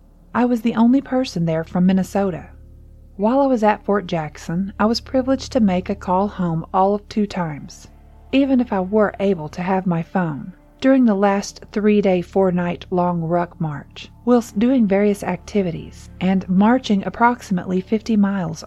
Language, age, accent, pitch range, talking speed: English, 40-59, American, 170-220 Hz, 165 wpm